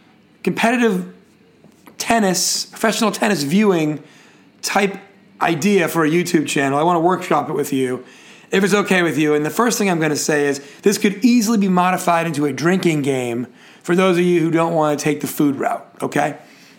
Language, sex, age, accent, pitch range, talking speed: English, male, 30-49, American, 160-215 Hz, 195 wpm